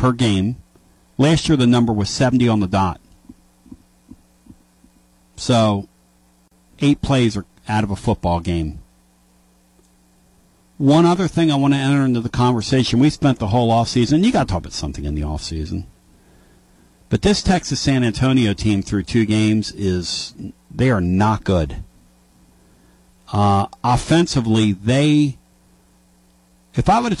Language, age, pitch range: English, 50-69, 80-125 Hz